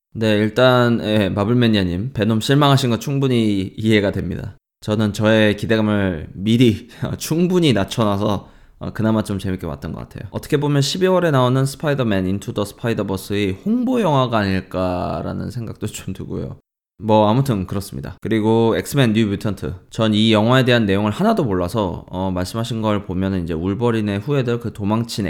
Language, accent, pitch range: Korean, native, 100-130 Hz